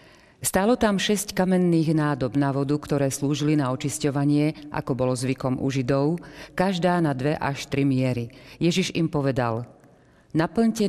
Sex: female